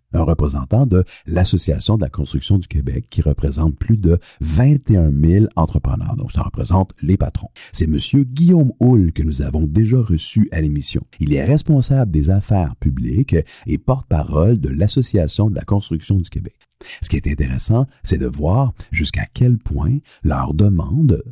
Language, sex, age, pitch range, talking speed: French, male, 50-69, 80-120 Hz, 165 wpm